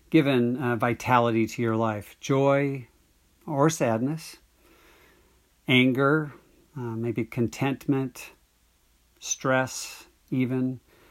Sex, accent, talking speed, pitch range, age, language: male, American, 80 wpm, 110-130 Hz, 50-69, English